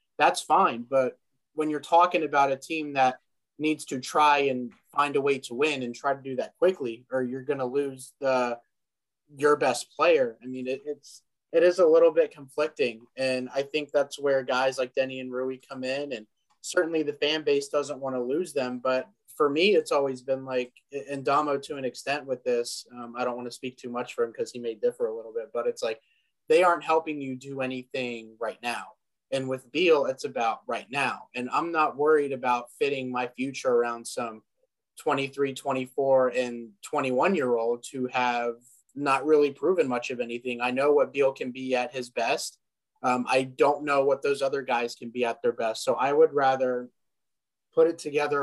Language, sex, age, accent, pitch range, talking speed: English, male, 20-39, American, 130-155 Hz, 205 wpm